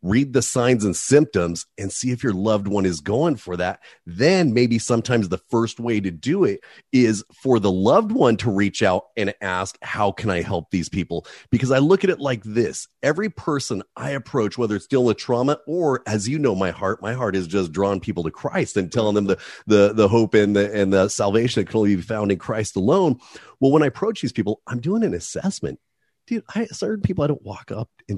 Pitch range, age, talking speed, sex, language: 95-130 Hz, 30-49, 230 wpm, male, English